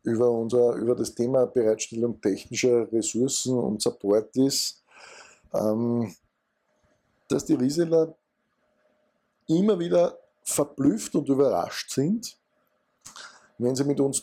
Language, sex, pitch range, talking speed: German, male, 115-130 Hz, 100 wpm